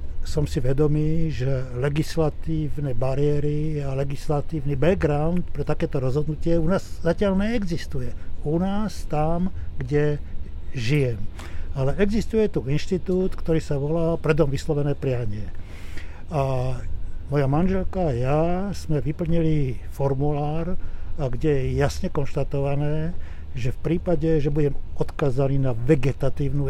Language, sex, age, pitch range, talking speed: Slovak, male, 60-79, 125-155 Hz, 115 wpm